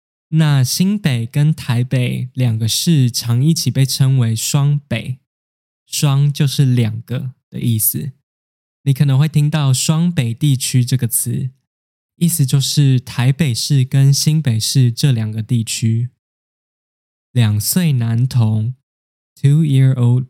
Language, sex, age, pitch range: Chinese, male, 10-29, 120-145 Hz